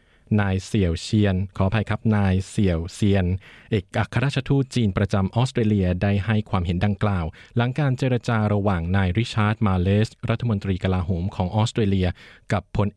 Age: 20-39